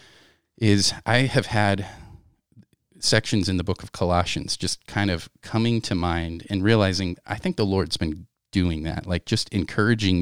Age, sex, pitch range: 30-49, male, 90-105 Hz